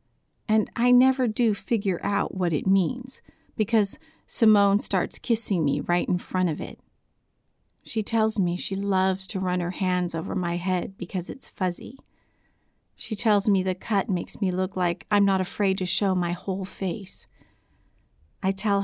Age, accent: 40-59, American